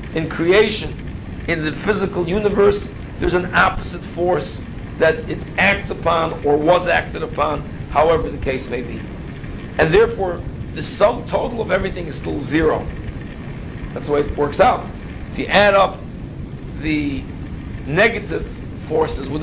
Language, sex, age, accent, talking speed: English, male, 60-79, American, 145 wpm